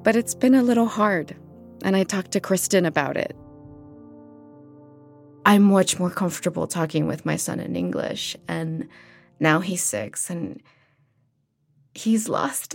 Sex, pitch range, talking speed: female, 145-220 Hz, 140 wpm